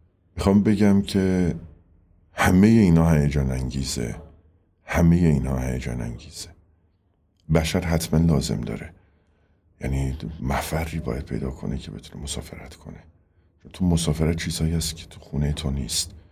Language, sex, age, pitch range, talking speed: Persian, male, 50-69, 70-90 Hz, 120 wpm